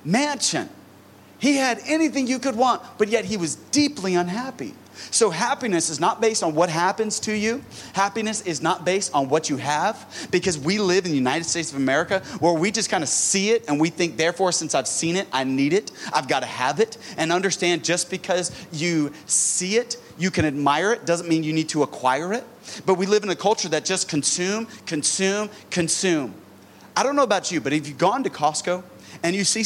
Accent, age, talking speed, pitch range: American, 30-49, 215 wpm, 155-200 Hz